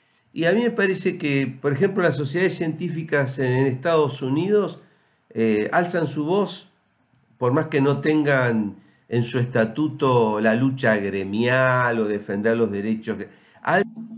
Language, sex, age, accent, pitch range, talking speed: Spanish, male, 50-69, Argentinian, 110-150 Hz, 145 wpm